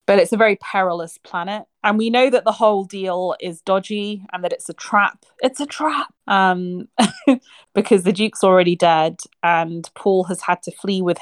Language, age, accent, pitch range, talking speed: English, 30-49, British, 170-210 Hz, 195 wpm